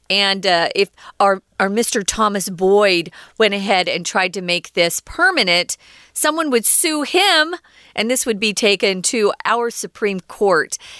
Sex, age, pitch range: female, 40-59, 185-250 Hz